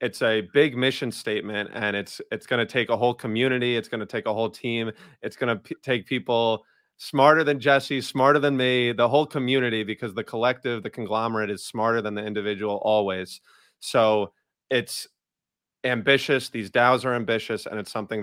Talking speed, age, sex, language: 190 wpm, 30-49, male, English